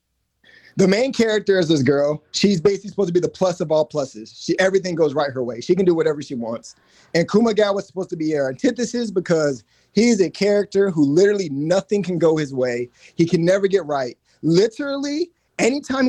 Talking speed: 195 wpm